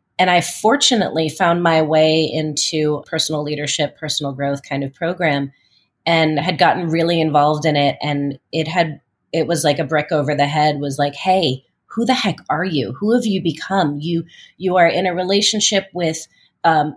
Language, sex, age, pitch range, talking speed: English, female, 30-49, 150-190 Hz, 180 wpm